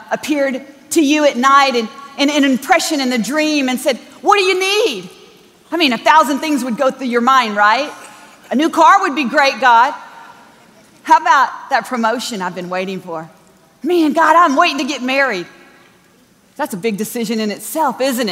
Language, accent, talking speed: English, American, 190 wpm